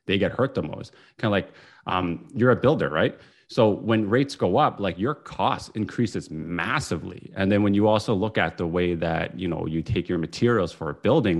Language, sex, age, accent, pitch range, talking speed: English, male, 30-49, American, 90-120 Hz, 220 wpm